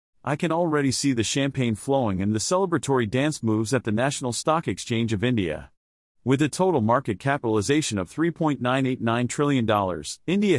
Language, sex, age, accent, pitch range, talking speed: English, male, 40-59, American, 115-150 Hz, 160 wpm